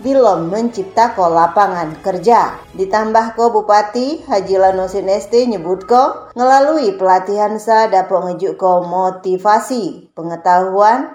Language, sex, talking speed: Indonesian, female, 110 wpm